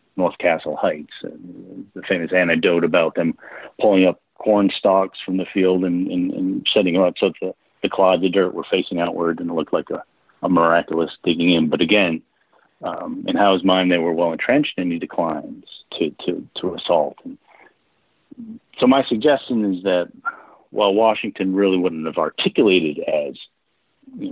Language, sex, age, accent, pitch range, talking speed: English, male, 50-69, American, 90-110 Hz, 175 wpm